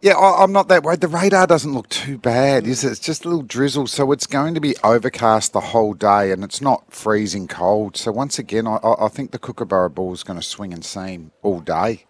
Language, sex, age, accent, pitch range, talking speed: English, male, 50-69, Australian, 100-145 Hz, 245 wpm